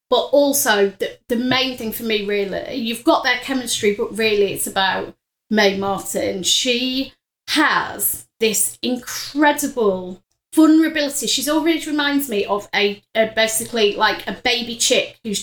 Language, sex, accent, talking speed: English, female, British, 145 wpm